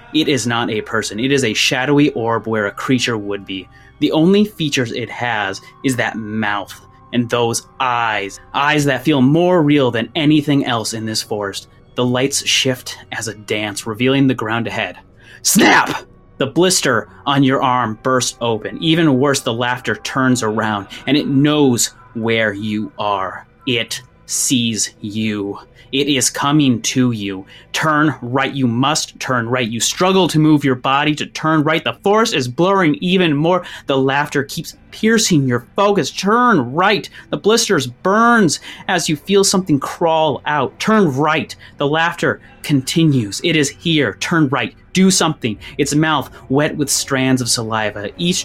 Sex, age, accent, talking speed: male, 30-49, American, 165 wpm